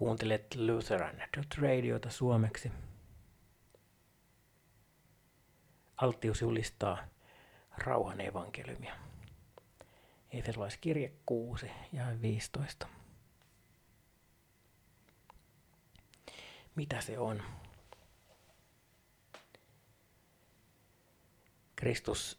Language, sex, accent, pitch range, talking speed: Finnish, male, native, 100-120 Hz, 45 wpm